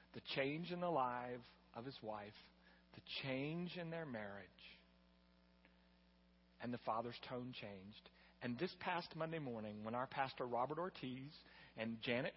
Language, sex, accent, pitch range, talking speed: English, male, American, 105-170 Hz, 145 wpm